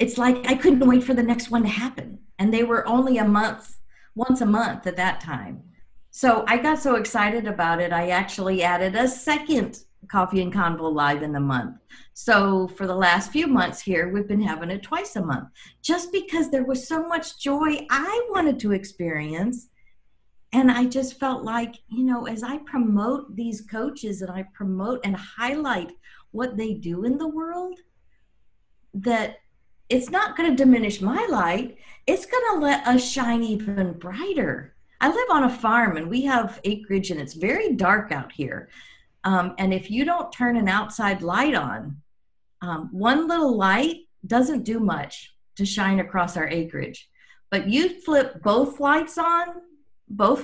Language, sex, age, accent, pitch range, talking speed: English, female, 50-69, American, 190-265 Hz, 180 wpm